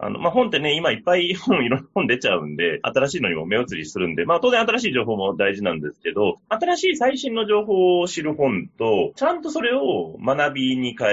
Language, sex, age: Japanese, male, 30-49